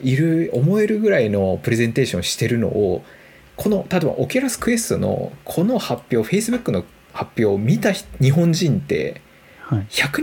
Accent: native